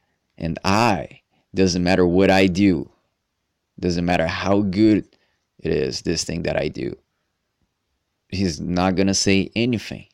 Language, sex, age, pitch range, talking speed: English, male, 20-39, 85-95 Hz, 135 wpm